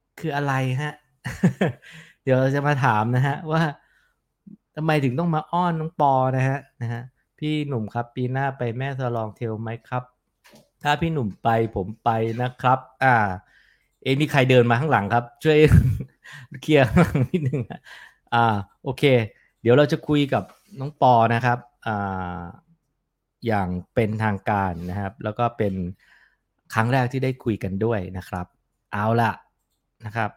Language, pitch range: English, 105-135 Hz